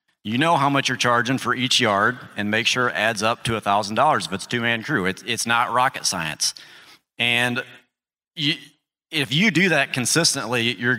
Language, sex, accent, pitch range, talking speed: English, male, American, 110-135 Hz, 185 wpm